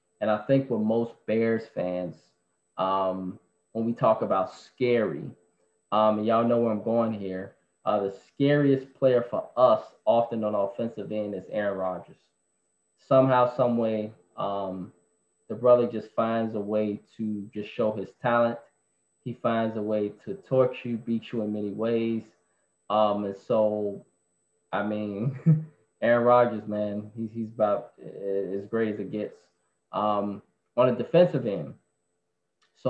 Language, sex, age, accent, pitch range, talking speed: English, male, 20-39, American, 95-115 Hz, 155 wpm